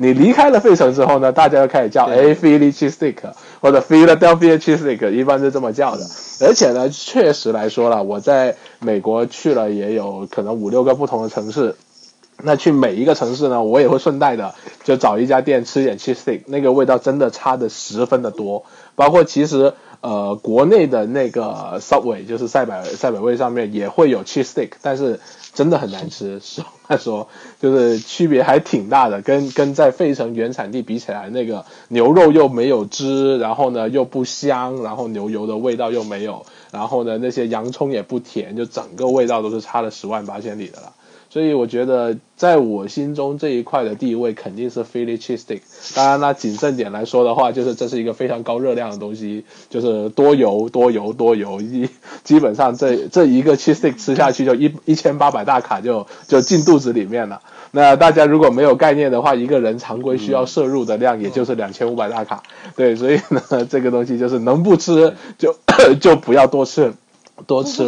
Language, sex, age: Chinese, male, 20-39